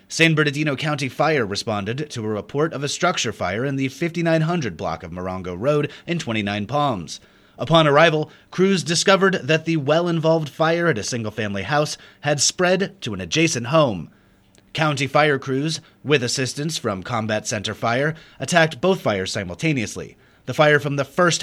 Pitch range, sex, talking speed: 110-160 Hz, male, 170 wpm